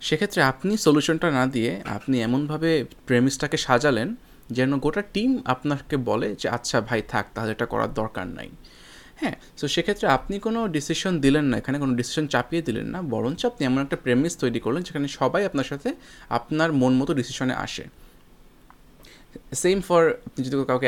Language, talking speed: Bengali, 165 wpm